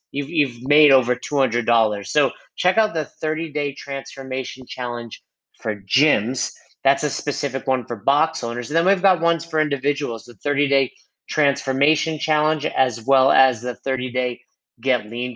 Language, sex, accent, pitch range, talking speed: English, male, American, 125-155 Hz, 165 wpm